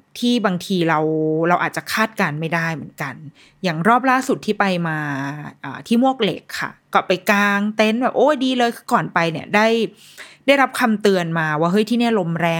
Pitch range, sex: 170-230 Hz, female